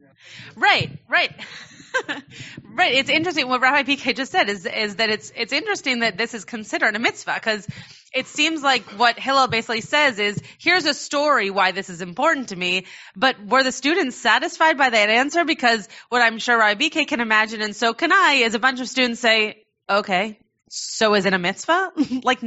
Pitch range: 220-300 Hz